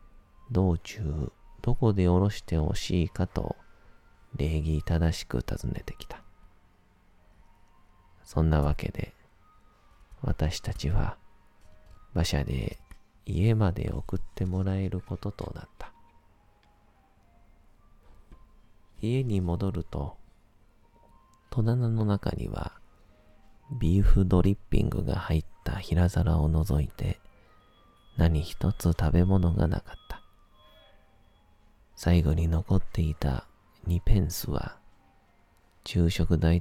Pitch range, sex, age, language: 85-100 Hz, male, 40-59, Japanese